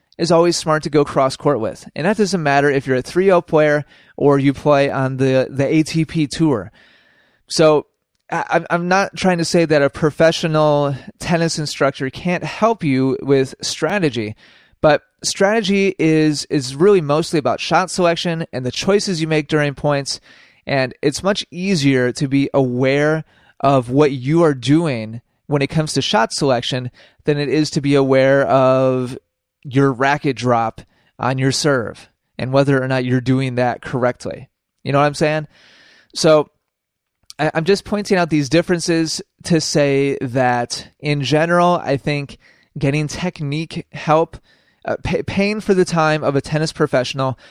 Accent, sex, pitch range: American, male, 135-165 Hz